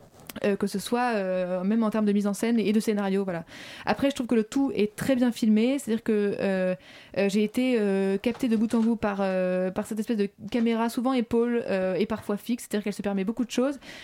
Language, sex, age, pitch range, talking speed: French, female, 20-39, 200-240 Hz, 250 wpm